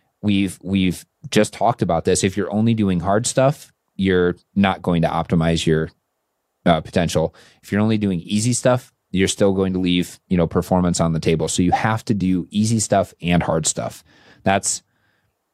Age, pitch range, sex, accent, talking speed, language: 30-49, 85-105 Hz, male, American, 185 wpm, English